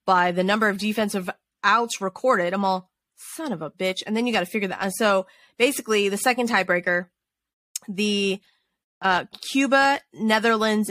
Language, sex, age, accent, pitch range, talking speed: English, female, 20-39, American, 180-220 Hz, 165 wpm